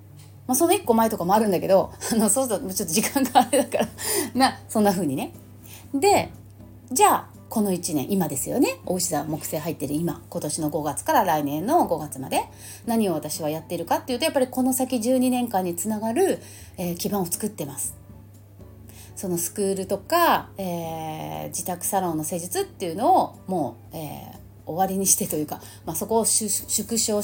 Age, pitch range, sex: 30-49, 170-255 Hz, female